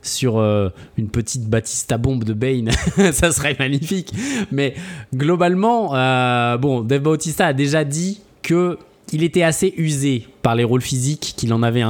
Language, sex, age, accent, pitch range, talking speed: French, male, 20-39, French, 125-155 Hz, 150 wpm